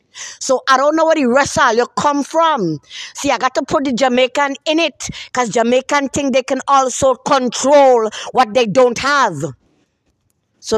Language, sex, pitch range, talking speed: English, female, 215-280 Hz, 175 wpm